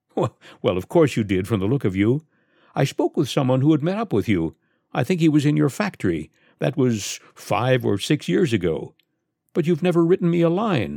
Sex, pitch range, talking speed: male, 110-165 Hz, 225 wpm